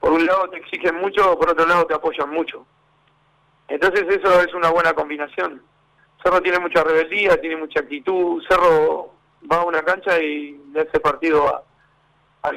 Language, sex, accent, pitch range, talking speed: Spanish, male, Argentinian, 155-190 Hz, 170 wpm